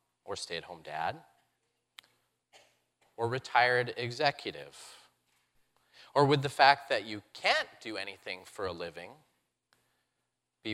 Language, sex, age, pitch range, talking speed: English, male, 30-49, 110-155 Hz, 105 wpm